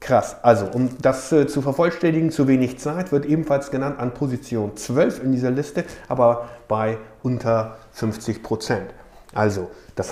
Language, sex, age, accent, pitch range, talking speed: German, male, 50-69, German, 115-150 Hz, 155 wpm